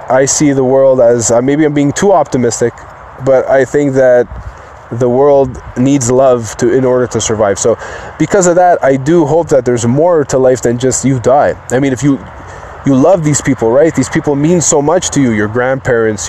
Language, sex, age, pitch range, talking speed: English, male, 20-39, 115-150 Hz, 215 wpm